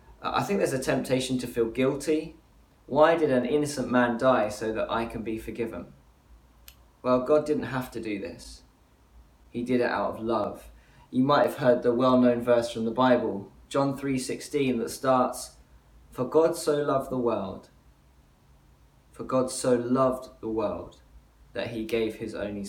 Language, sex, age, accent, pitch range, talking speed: English, male, 20-39, British, 105-130 Hz, 170 wpm